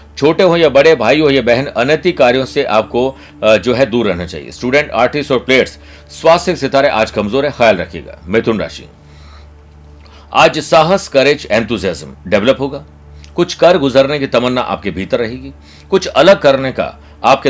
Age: 60-79